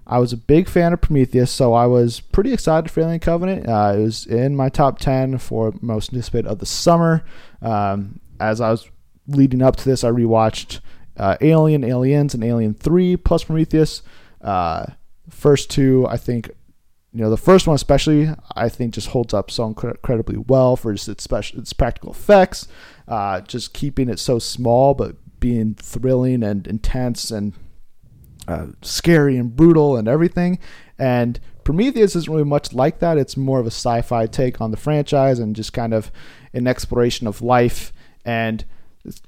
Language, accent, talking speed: English, American, 175 wpm